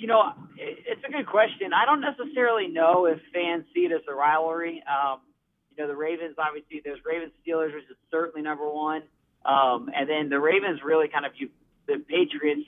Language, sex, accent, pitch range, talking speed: English, male, American, 145-185 Hz, 195 wpm